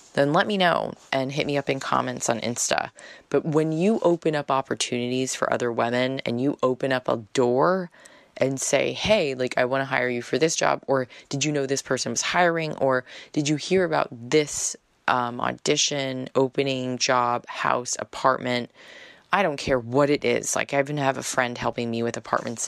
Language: English